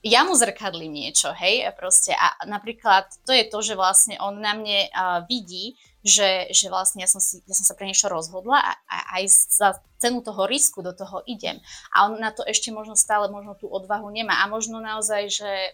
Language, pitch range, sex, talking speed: Slovak, 185-210 Hz, female, 210 wpm